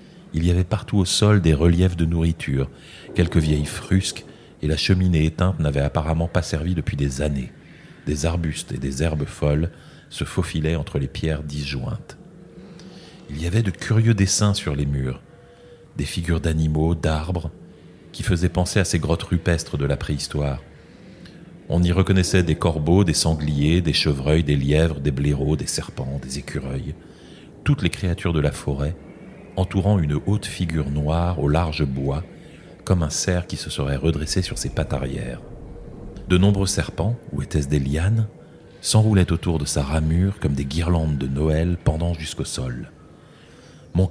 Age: 40-59